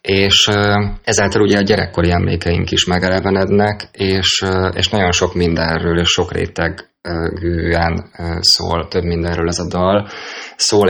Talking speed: 125 wpm